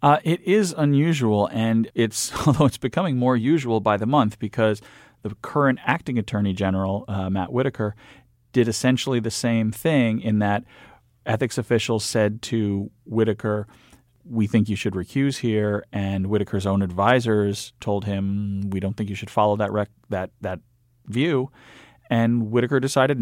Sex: male